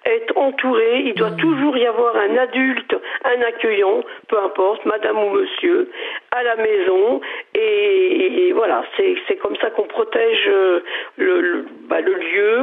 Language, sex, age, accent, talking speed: French, female, 50-69, French, 155 wpm